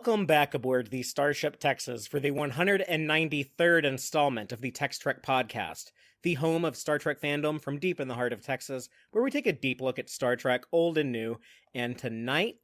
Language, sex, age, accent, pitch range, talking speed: English, male, 30-49, American, 125-155 Hz, 200 wpm